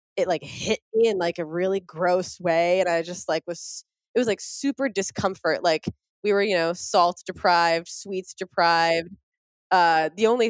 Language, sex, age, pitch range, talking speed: English, female, 20-39, 165-195 Hz, 185 wpm